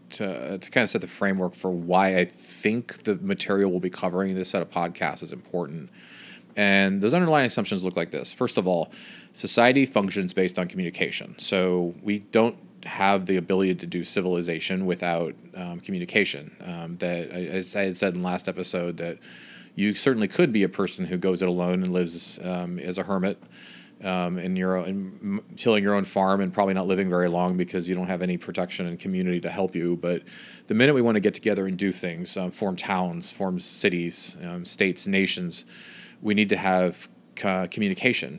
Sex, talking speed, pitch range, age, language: male, 200 wpm, 90-95 Hz, 30-49, English